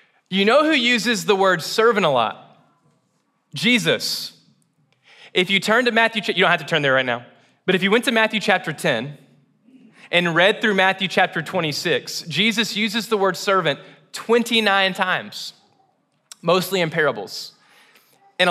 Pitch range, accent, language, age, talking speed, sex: 150-200 Hz, American, English, 20-39, 155 wpm, male